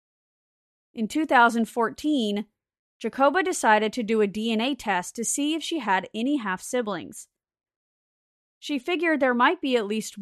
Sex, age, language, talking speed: female, 30-49, English, 135 wpm